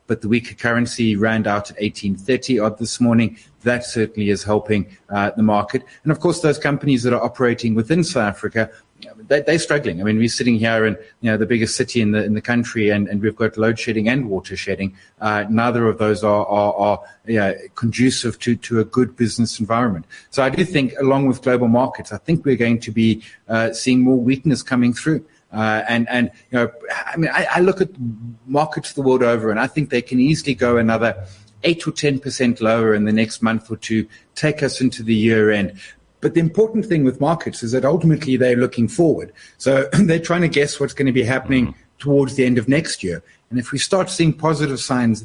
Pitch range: 110-140 Hz